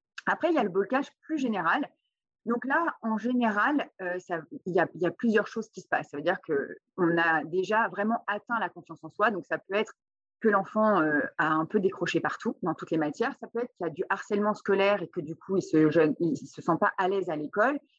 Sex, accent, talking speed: female, French, 255 wpm